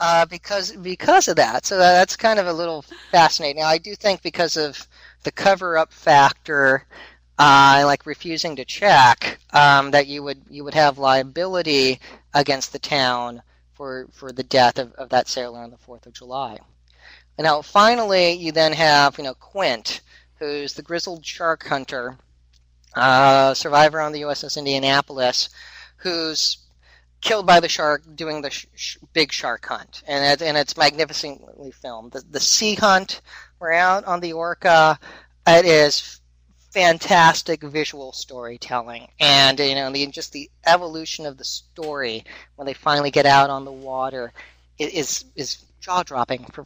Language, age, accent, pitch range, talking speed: English, 40-59, American, 130-170 Hz, 160 wpm